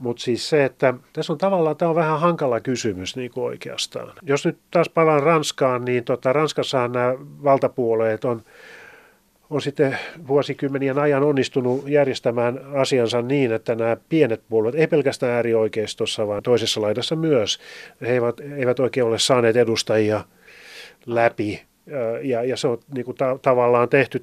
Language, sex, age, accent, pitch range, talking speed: Finnish, male, 30-49, native, 120-145 Hz, 155 wpm